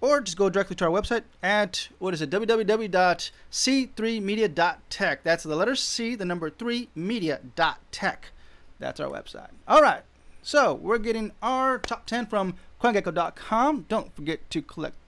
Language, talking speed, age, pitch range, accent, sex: English, 145 wpm, 30-49, 170-235 Hz, American, male